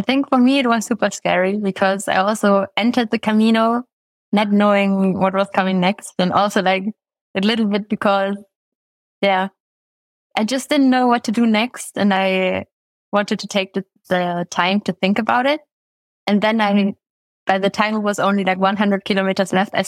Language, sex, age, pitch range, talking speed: English, female, 20-39, 195-235 Hz, 185 wpm